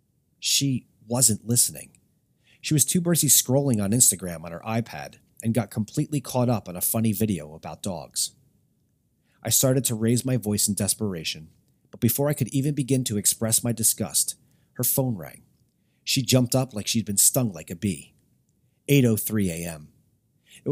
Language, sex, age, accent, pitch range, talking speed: English, male, 40-59, American, 105-130 Hz, 170 wpm